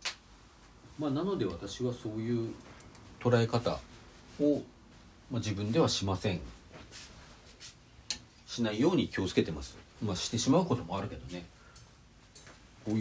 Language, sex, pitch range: Japanese, male, 90-145 Hz